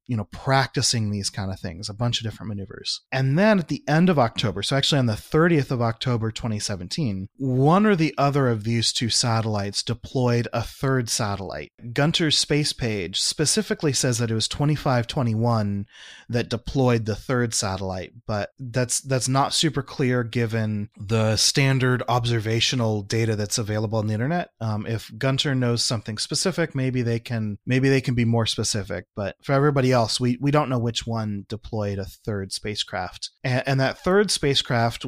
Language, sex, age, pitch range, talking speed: English, male, 30-49, 110-135 Hz, 180 wpm